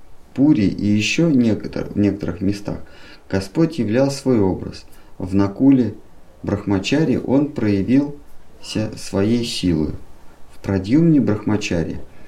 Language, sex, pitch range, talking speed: Russian, male, 90-120 Hz, 100 wpm